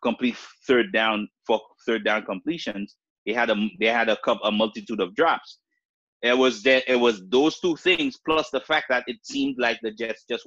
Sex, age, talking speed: male, 30-49, 205 wpm